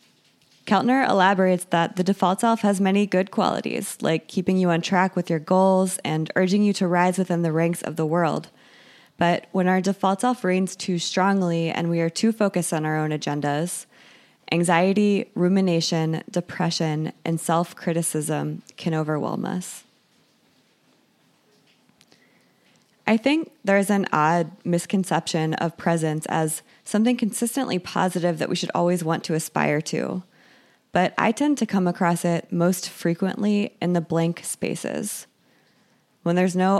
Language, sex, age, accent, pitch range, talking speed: English, female, 20-39, American, 165-195 Hz, 150 wpm